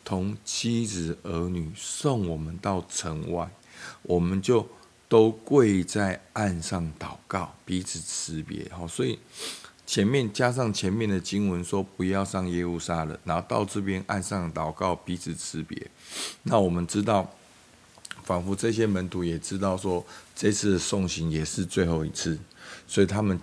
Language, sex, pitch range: Chinese, male, 85-100 Hz